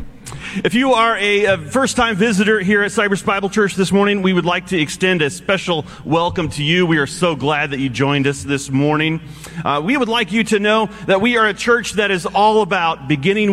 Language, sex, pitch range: English, male, 150-200 Hz